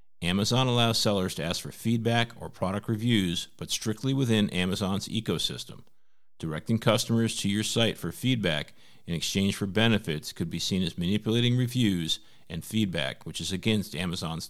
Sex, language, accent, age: male, English, American, 50-69